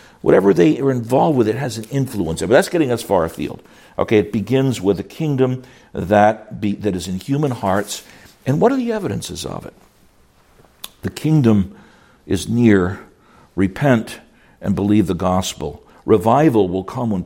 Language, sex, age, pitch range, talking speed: English, male, 60-79, 95-125 Hz, 165 wpm